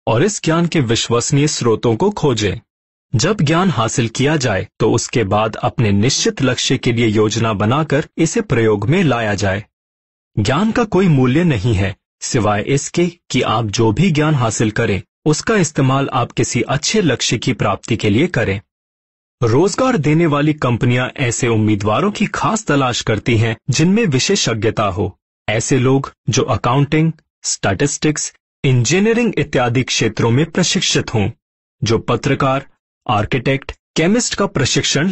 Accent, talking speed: Indian, 115 wpm